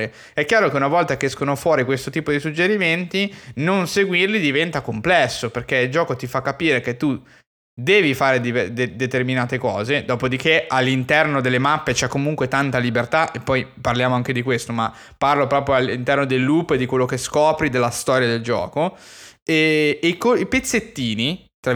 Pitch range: 120-155 Hz